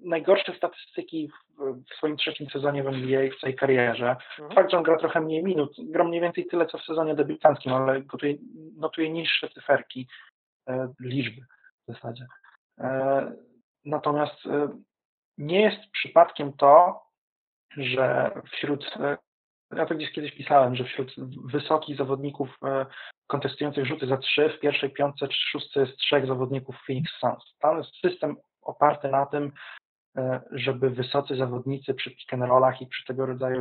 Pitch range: 130-165 Hz